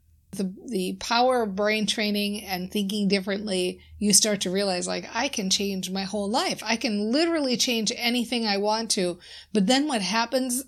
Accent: American